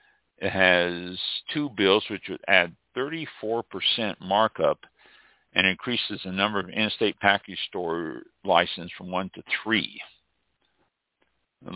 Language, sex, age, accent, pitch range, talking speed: English, male, 60-79, American, 90-105 Hz, 115 wpm